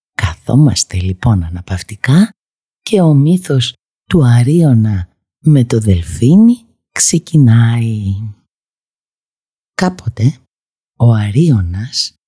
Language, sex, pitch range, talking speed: Greek, female, 100-135 Hz, 75 wpm